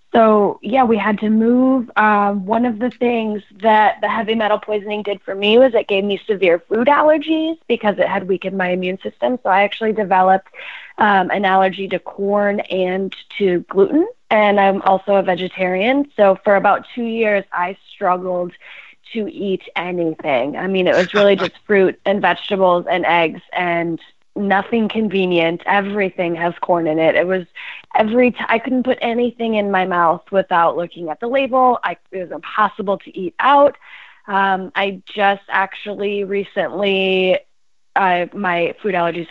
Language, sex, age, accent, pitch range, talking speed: English, female, 20-39, American, 185-225 Hz, 170 wpm